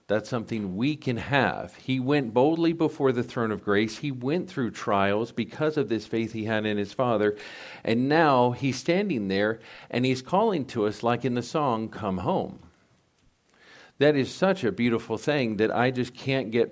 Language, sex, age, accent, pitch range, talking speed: English, male, 50-69, American, 115-150 Hz, 190 wpm